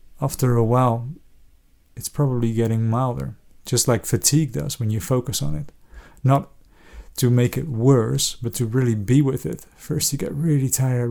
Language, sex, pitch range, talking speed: English, male, 110-135 Hz, 175 wpm